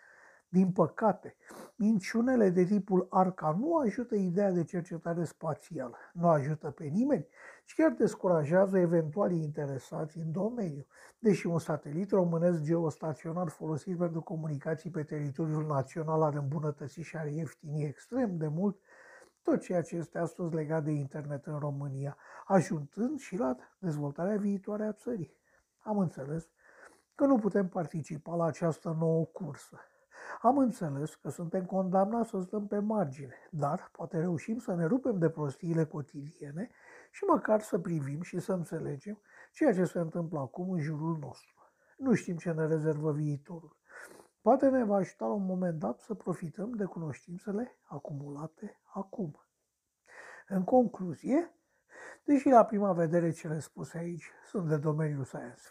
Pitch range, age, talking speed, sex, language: 155-205 Hz, 60-79, 145 wpm, male, Romanian